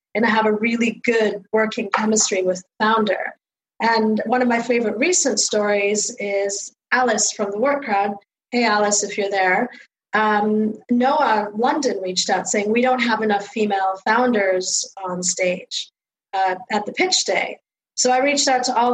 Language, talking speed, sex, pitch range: English, 170 wpm, female, 205-245 Hz